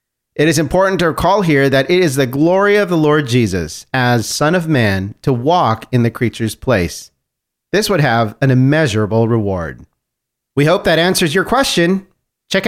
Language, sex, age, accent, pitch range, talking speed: English, male, 40-59, American, 125-185 Hz, 180 wpm